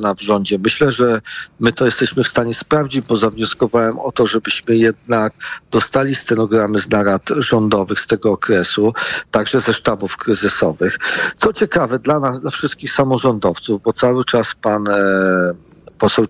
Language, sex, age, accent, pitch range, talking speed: Polish, male, 40-59, native, 110-145 Hz, 150 wpm